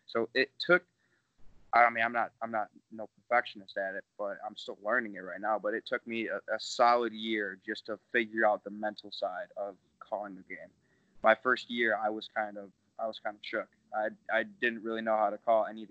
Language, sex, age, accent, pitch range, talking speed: English, male, 20-39, American, 105-115 Hz, 230 wpm